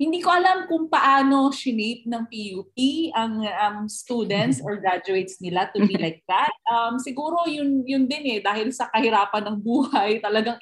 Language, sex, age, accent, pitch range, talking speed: Filipino, female, 20-39, native, 185-255 Hz, 170 wpm